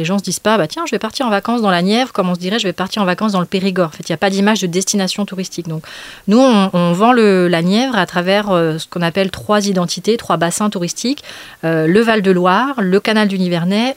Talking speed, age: 270 wpm, 30-49